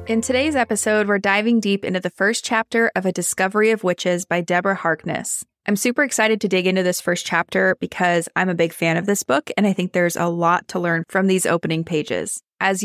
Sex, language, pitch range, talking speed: female, English, 175-215 Hz, 225 wpm